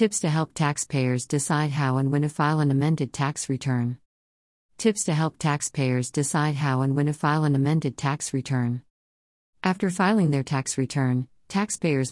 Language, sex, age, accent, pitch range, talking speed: English, female, 50-69, American, 130-155 Hz, 170 wpm